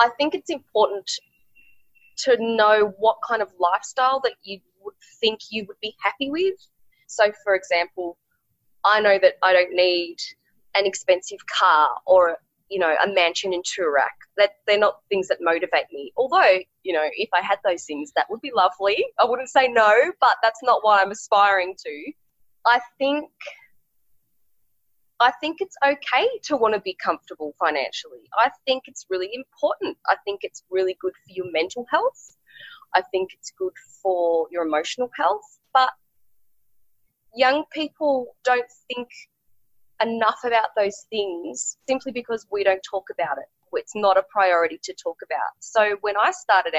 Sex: female